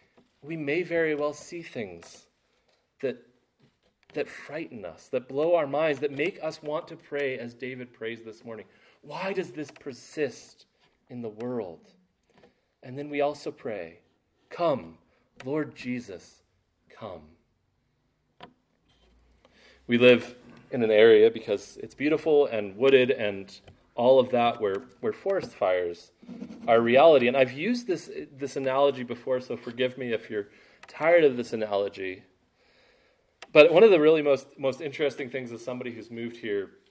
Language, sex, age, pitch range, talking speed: English, male, 30-49, 115-155 Hz, 150 wpm